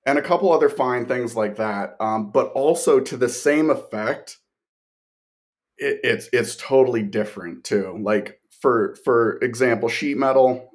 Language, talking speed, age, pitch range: English, 150 wpm, 30-49, 100-115 Hz